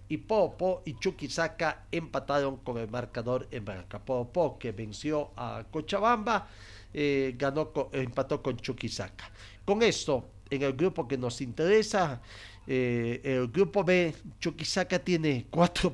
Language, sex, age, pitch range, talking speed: Spanish, male, 50-69, 110-170 Hz, 140 wpm